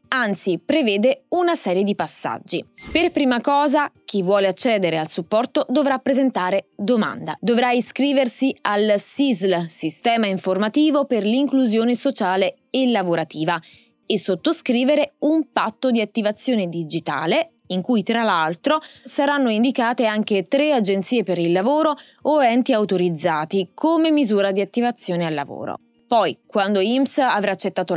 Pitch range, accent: 185-270 Hz, native